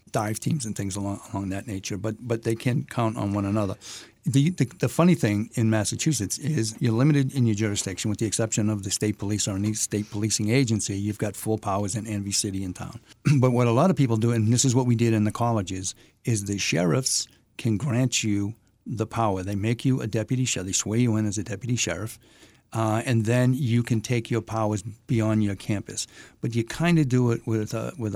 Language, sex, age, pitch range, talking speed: English, male, 50-69, 105-120 Hz, 230 wpm